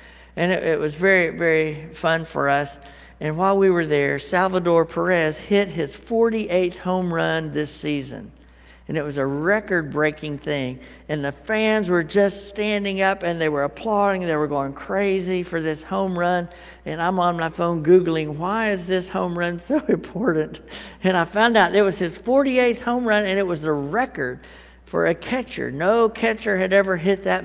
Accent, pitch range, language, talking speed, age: American, 150-195 Hz, English, 190 wpm, 60-79